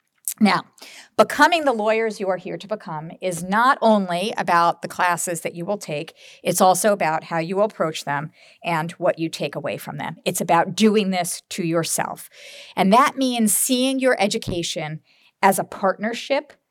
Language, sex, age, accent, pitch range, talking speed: English, female, 50-69, American, 175-240 Hz, 175 wpm